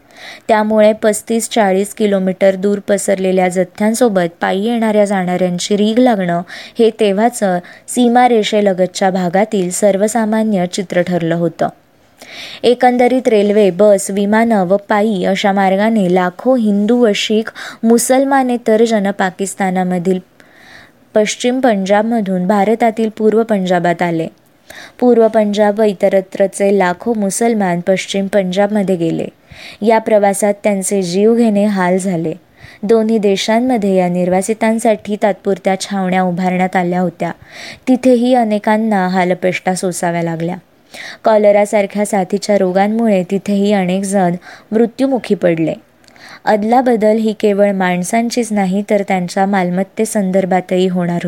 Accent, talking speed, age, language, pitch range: native, 105 wpm, 20-39, Marathi, 185-220 Hz